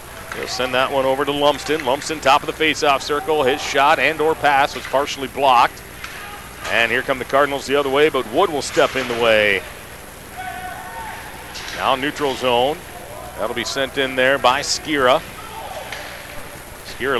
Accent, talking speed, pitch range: American, 165 wpm, 125-145 Hz